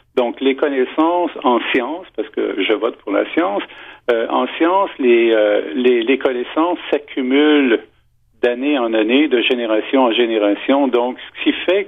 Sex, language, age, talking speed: male, French, 50-69, 160 wpm